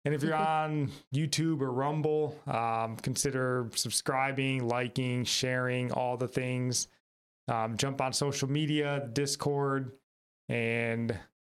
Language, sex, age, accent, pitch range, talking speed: English, male, 30-49, American, 125-155 Hz, 115 wpm